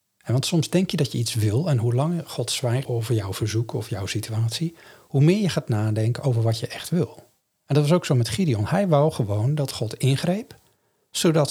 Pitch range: 115-155 Hz